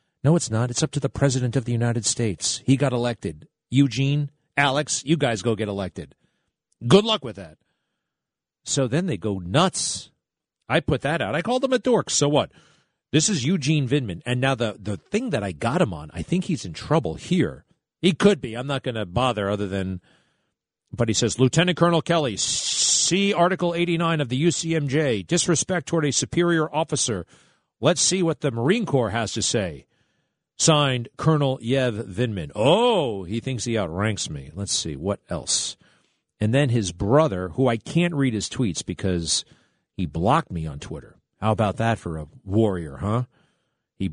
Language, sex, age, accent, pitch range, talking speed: English, male, 40-59, American, 110-150 Hz, 185 wpm